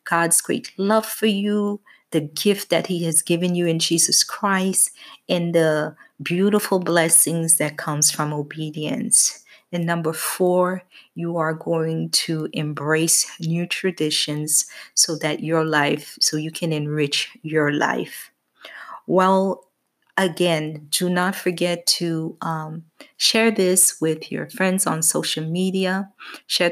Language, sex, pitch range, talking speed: English, female, 155-180 Hz, 135 wpm